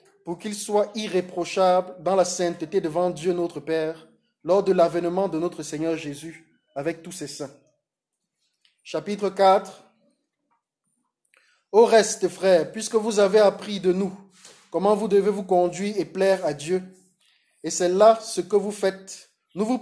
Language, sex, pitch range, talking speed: French, male, 175-210 Hz, 155 wpm